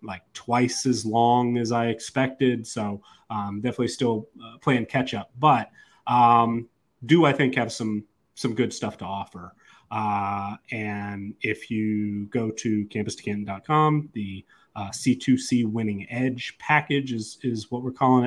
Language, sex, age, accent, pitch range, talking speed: English, male, 30-49, American, 105-125 Hz, 150 wpm